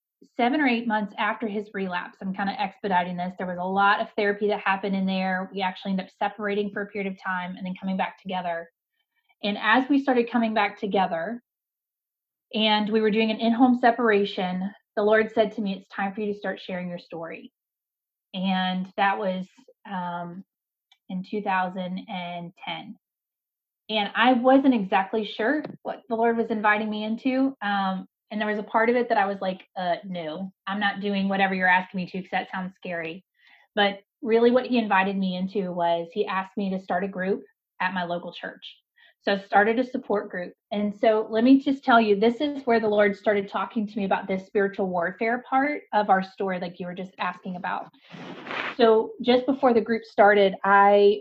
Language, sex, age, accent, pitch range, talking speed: English, female, 30-49, American, 190-225 Hz, 200 wpm